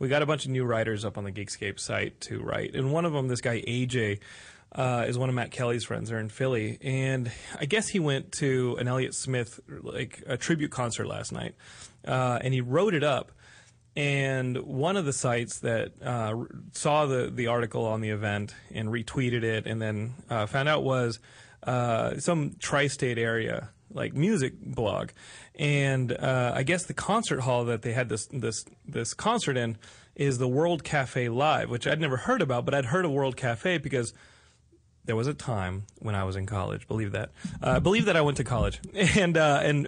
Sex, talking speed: male, 205 wpm